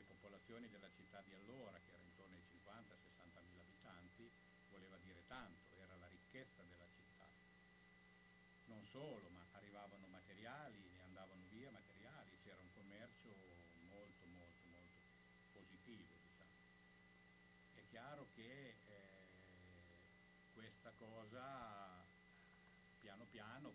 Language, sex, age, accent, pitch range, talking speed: Italian, male, 60-79, native, 85-100 Hz, 115 wpm